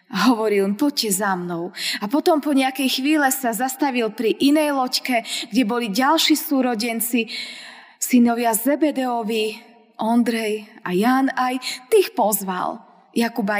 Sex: female